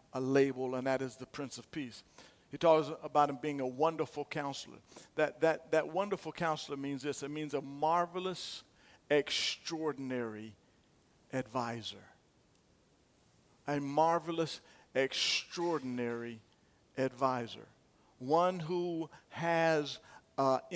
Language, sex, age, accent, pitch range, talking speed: English, male, 50-69, American, 135-170 Hz, 105 wpm